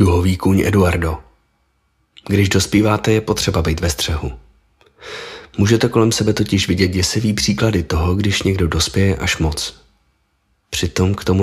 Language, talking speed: Czech, 135 wpm